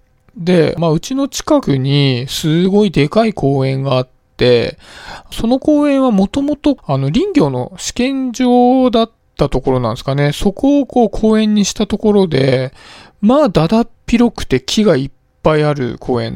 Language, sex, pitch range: Japanese, male, 130-220 Hz